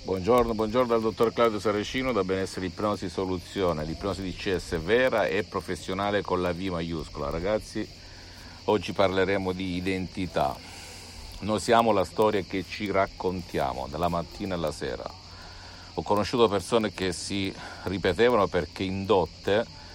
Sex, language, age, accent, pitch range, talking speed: male, Italian, 50-69, native, 85-100 Hz, 130 wpm